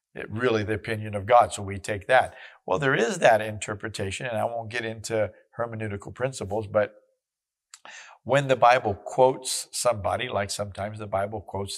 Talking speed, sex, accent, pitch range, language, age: 170 wpm, male, American, 105-125 Hz, English, 50-69